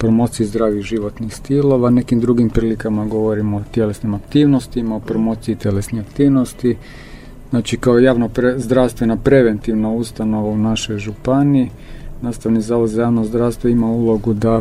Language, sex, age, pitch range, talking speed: Croatian, male, 40-59, 110-125 Hz, 135 wpm